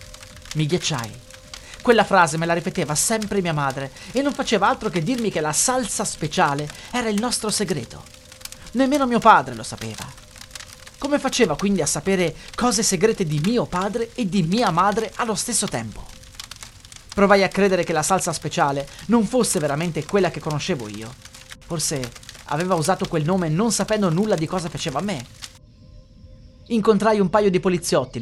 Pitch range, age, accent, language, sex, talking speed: 130-215 Hz, 30-49, native, Italian, male, 165 wpm